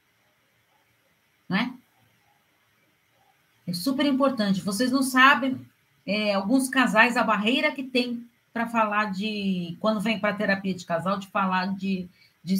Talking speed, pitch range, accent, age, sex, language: 125 wpm, 185-260 Hz, Brazilian, 40-59, female, Portuguese